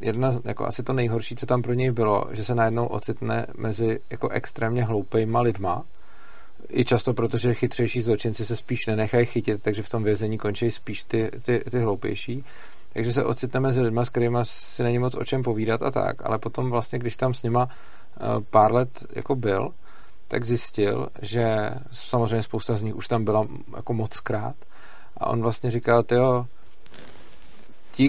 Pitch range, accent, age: 115-130 Hz, native, 40-59